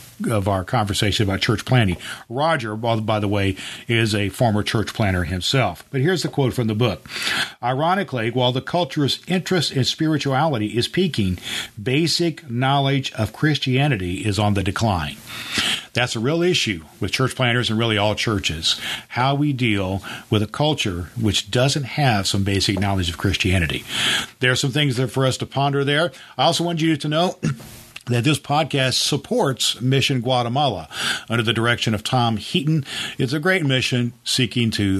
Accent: American